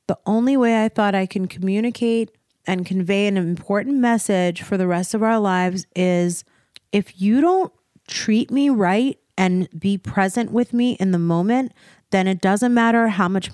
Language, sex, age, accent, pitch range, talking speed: English, female, 30-49, American, 185-245 Hz, 175 wpm